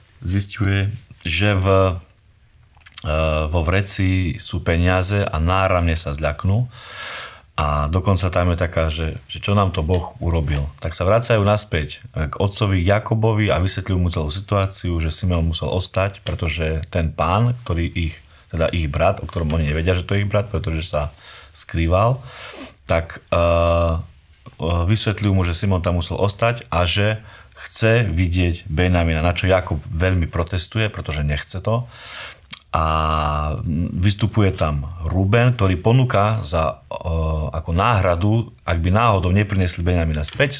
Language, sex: Slovak, male